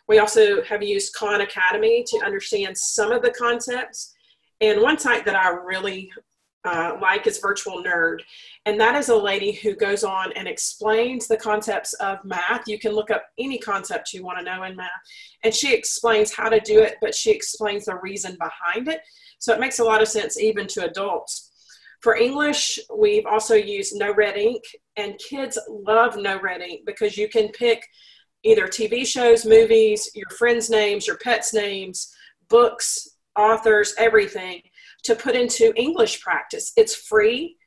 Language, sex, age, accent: English, female, 40-59, American